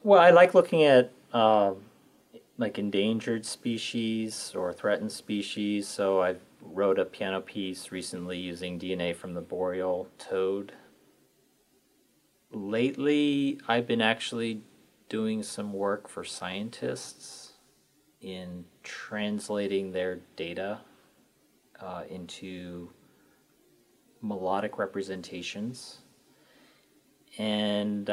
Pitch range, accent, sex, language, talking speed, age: 95-120 Hz, American, male, English, 90 wpm, 30-49